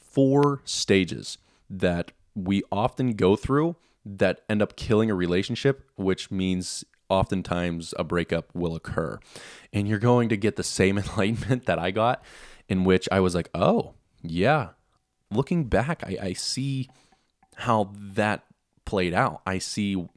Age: 20-39